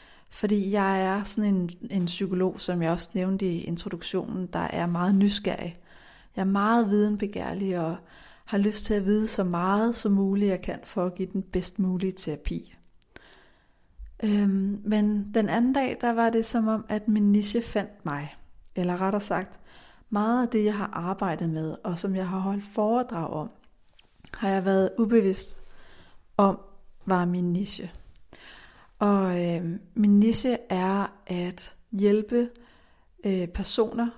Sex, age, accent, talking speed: female, 40-59, native, 155 wpm